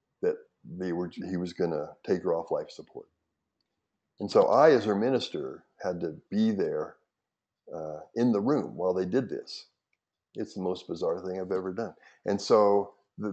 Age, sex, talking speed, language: 60-79, male, 185 wpm, English